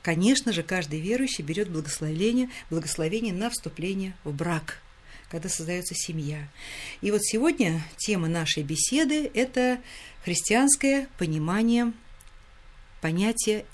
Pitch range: 165-245 Hz